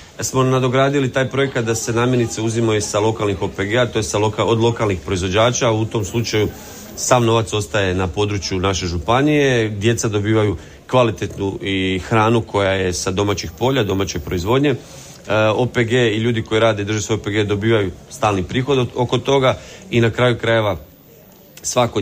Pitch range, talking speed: 95-120 Hz, 165 wpm